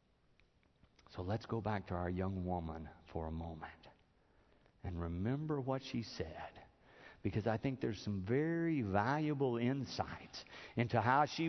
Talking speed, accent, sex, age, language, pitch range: 140 wpm, American, male, 50-69, English, 115-165 Hz